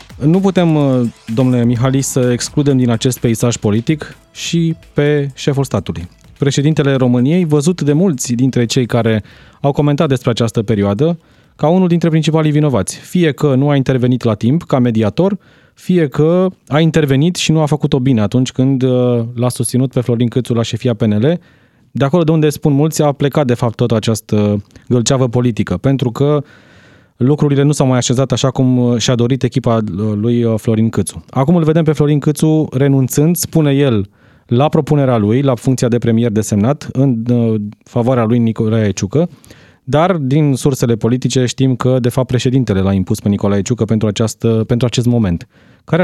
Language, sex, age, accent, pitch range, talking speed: Romanian, male, 20-39, native, 115-145 Hz, 170 wpm